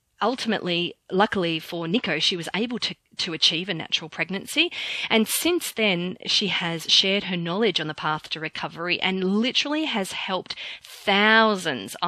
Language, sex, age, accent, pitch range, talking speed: English, female, 30-49, Australian, 165-220 Hz, 155 wpm